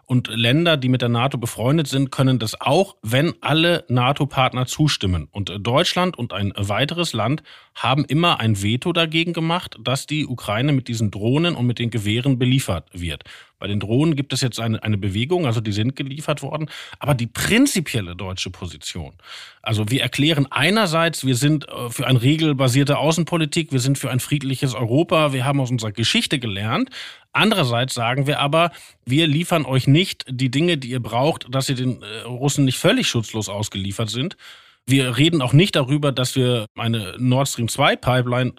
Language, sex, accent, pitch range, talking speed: German, male, German, 120-150 Hz, 175 wpm